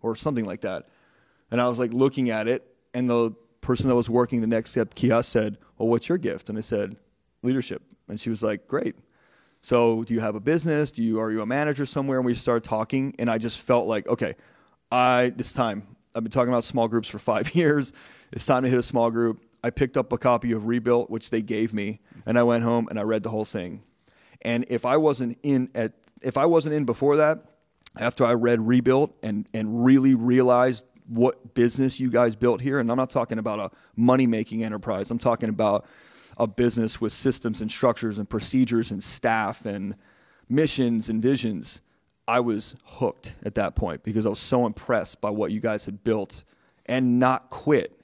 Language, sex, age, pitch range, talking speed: English, male, 30-49, 110-130 Hz, 210 wpm